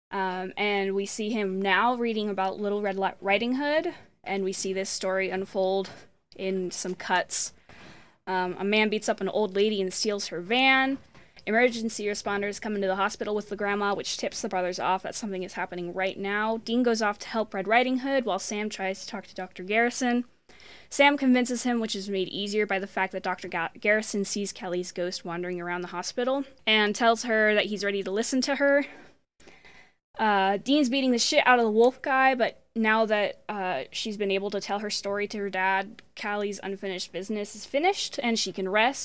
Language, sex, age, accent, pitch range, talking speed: English, female, 10-29, American, 195-245 Hz, 205 wpm